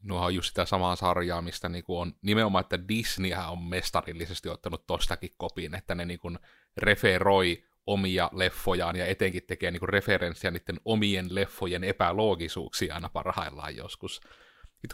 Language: Finnish